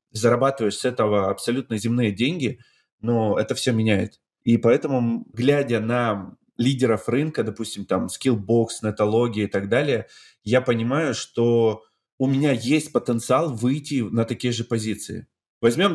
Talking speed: 135 wpm